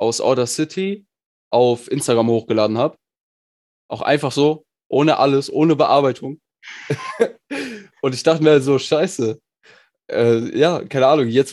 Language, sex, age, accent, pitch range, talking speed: German, male, 20-39, German, 115-145 Hz, 135 wpm